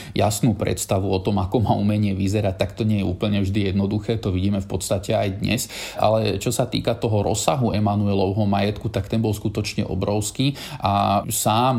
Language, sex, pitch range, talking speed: Slovak, male, 100-110 Hz, 185 wpm